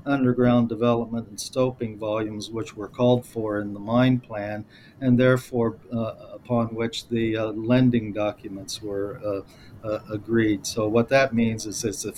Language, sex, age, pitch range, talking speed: English, male, 50-69, 105-125 Hz, 160 wpm